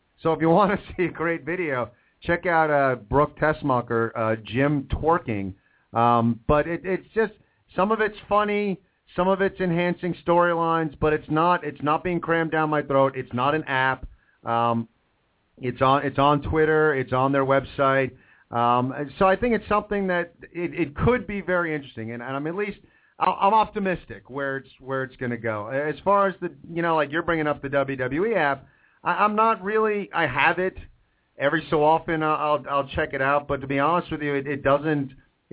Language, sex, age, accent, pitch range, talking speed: English, male, 40-59, American, 130-170 Hz, 210 wpm